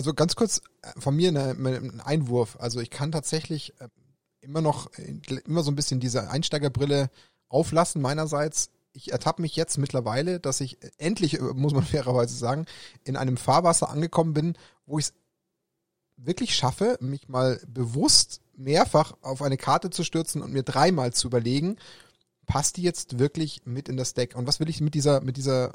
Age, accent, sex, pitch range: 30-49, German, male, 130-155 Hz